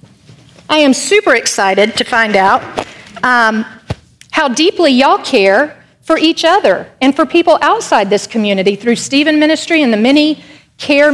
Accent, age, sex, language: American, 50-69, female, English